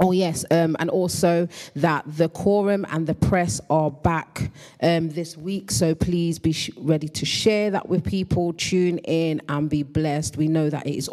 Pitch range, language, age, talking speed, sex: 150-185 Hz, English, 30-49, 190 wpm, female